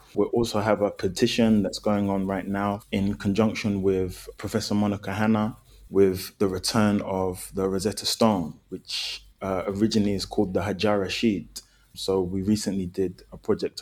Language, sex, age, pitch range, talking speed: English, male, 20-39, 95-110 Hz, 160 wpm